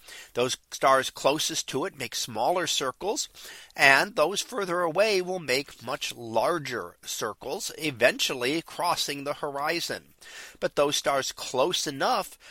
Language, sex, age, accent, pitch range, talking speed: English, male, 40-59, American, 130-190 Hz, 125 wpm